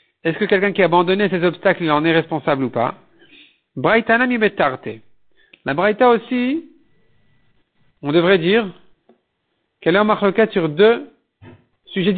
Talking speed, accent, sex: 135 wpm, French, male